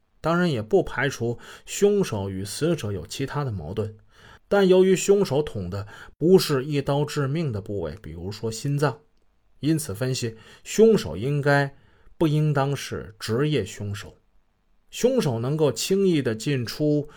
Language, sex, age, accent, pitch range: Chinese, male, 20-39, native, 110-160 Hz